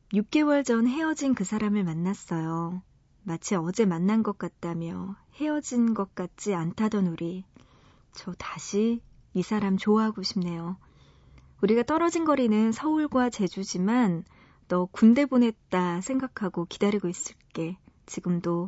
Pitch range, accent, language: 185-240 Hz, native, Korean